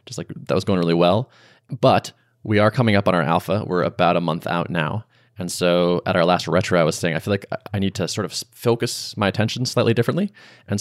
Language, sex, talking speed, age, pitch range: English, male, 245 wpm, 20-39, 90-115 Hz